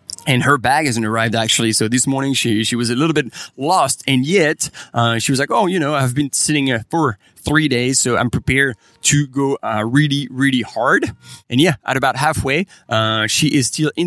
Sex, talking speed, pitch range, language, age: male, 220 wpm, 115-145 Hz, English, 20-39